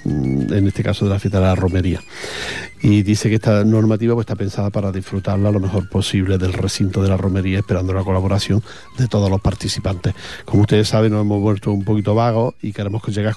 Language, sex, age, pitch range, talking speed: Portuguese, male, 40-59, 100-115 Hz, 210 wpm